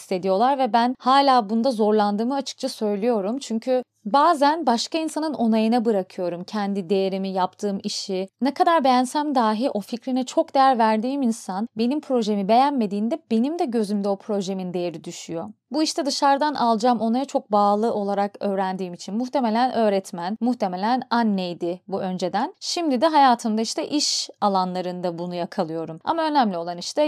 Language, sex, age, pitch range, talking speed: Turkish, female, 30-49, 195-265 Hz, 145 wpm